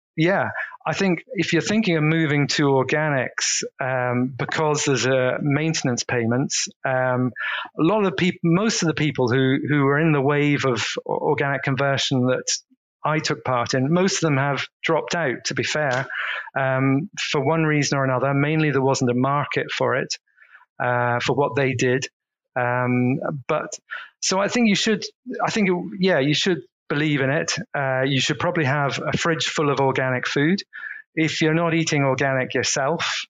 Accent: British